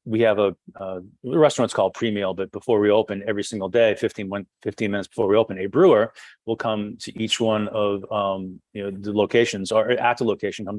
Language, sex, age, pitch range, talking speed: English, male, 30-49, 100-120 Hz, 210 wpm